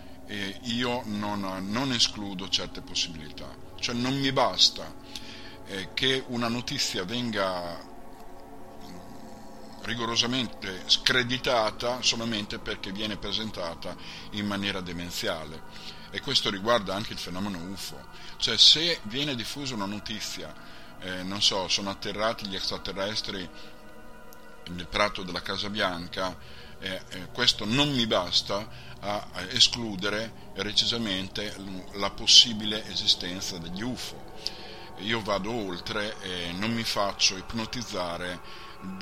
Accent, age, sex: native, 50-69, male